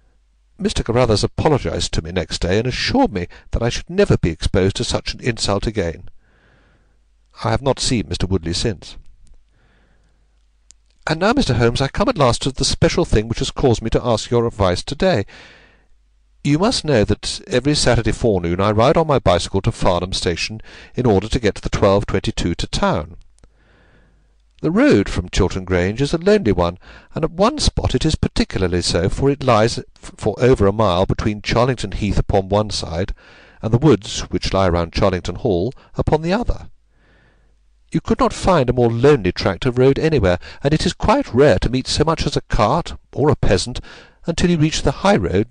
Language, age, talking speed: English, 60-79, 195 wpm